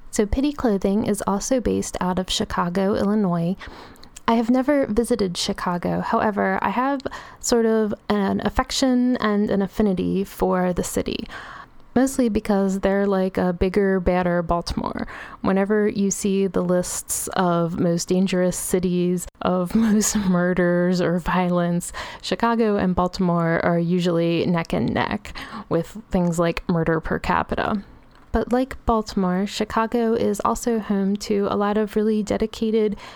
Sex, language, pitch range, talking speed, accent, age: female, English, 185-215 Hz, 140 wpm, American, 20-39